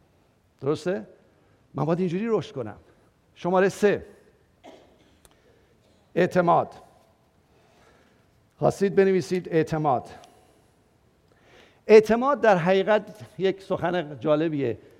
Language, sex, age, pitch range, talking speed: English, male, 50-69, 155-215 Hz, 70 wpm